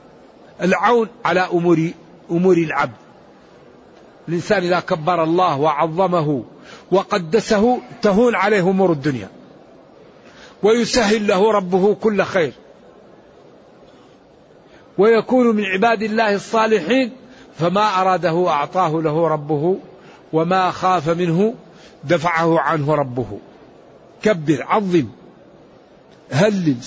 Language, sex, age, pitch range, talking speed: Arabic, male, 60-79, 165-215 Hz, 85 wpm